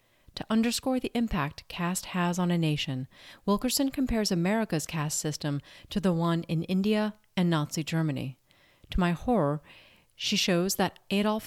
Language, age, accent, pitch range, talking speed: English, 40-59, American, 150-190 Hz, 150 wpm